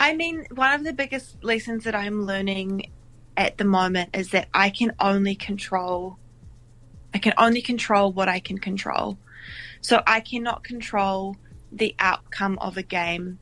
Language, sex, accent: English, female, Australian